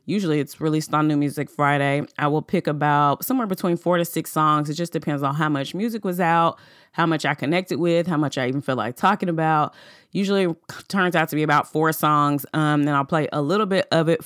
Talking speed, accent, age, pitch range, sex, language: 240 wpm, American, 20-39, 150-175 Hz, female, English